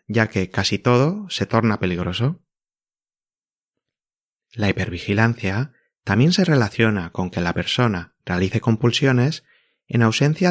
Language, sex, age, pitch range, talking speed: Spanish, male, 30-49, 100-130 Hz, 115 wpm